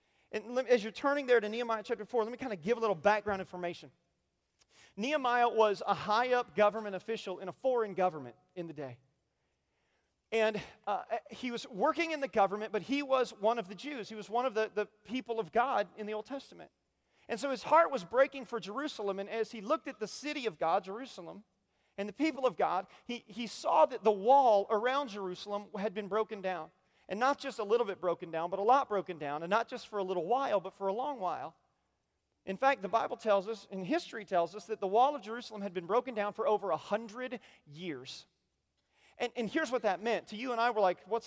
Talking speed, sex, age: 225 wpm, male, 40-59